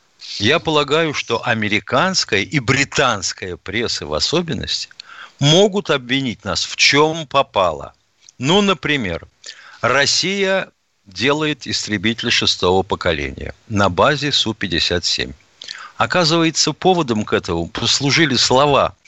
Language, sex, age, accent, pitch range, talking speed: Russian, male, 50-69, native, 105-150 Hz, 100 wpm